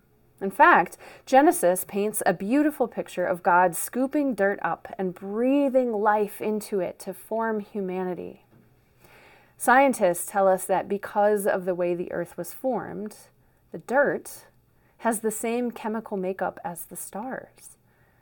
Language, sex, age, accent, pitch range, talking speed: English, female, 30-49, American, 180-220 Hz, 140 wpm